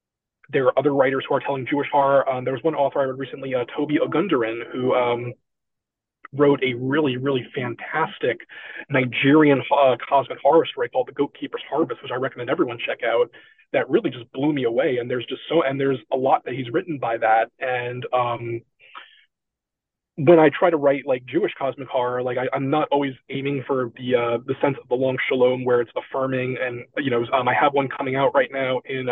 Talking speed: 210 wpm